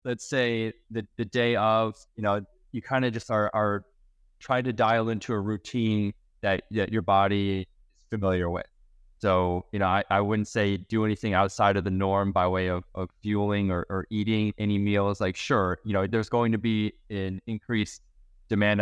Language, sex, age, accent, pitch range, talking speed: English, male, 20-39, American, 95-110 Hz, 195 wpm